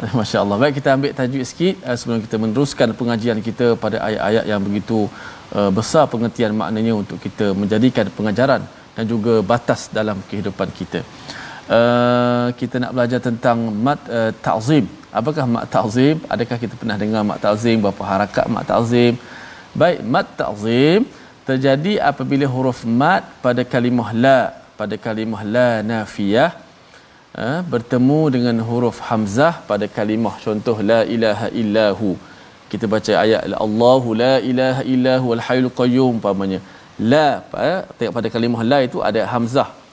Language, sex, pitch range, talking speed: Malayalam, male, 110-130 Hz, 145 wpm